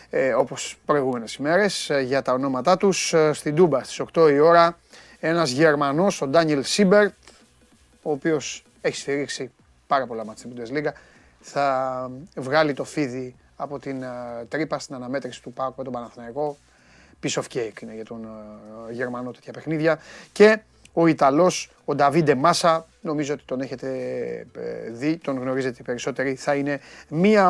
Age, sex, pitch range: 30-49, male, 125-170 Hz